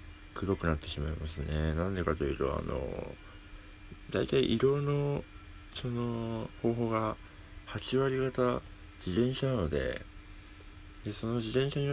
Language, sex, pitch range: Japanese, male, 80-105 Hz